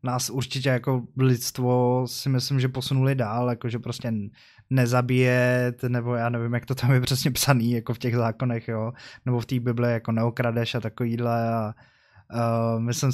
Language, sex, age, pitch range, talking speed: English, male, 20-39, 115-130 Hz, 175 wpm